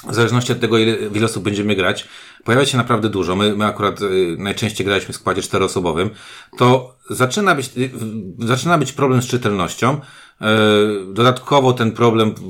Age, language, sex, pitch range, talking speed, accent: 40-59, Polish, male, 95-115 Hz, 175 wpm, native